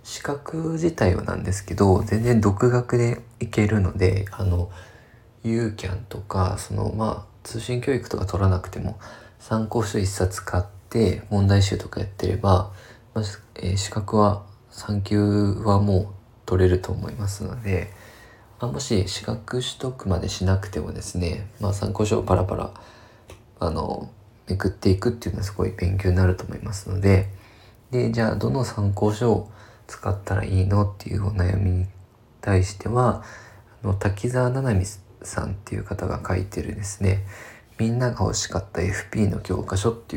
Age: 20-39